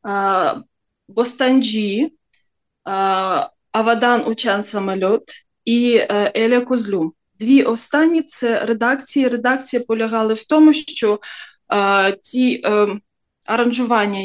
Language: Ukrainian